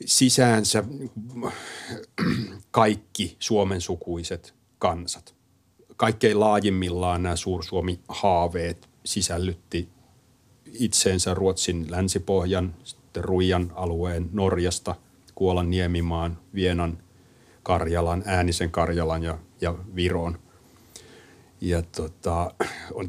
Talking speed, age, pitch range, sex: 75 wpm, 30-49, 85-100 Hz, male